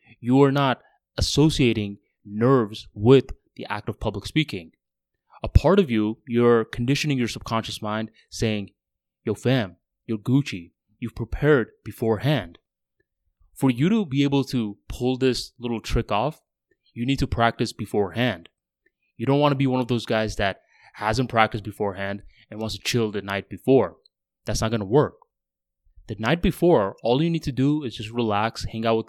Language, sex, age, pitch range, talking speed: English, male, 20-39, 105-130 Hz, 170 wpm